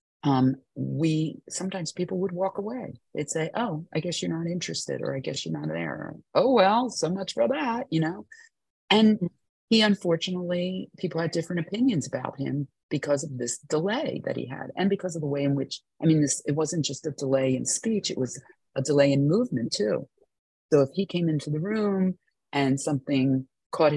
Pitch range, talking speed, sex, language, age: 135-180 Hz, 200 wpm, female, English, 40-59